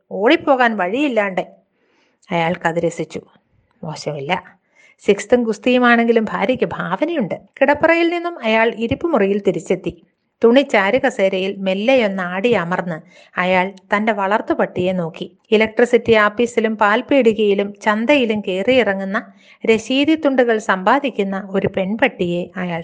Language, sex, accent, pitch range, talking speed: Malayalam, female, native, 185-240 Hz, 85 wpm